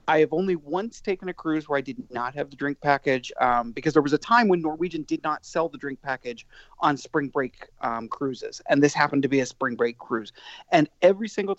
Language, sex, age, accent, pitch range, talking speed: English, male, 40-59, American, 135-185 Hz, 240 wpm